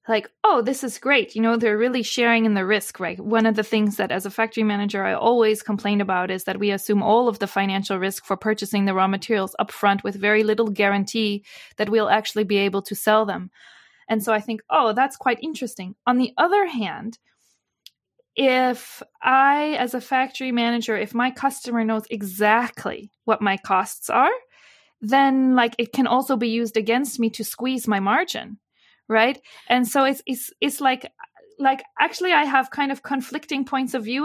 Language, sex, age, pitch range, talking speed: English, female, 20-39, 215-270 Hz, 195 wpm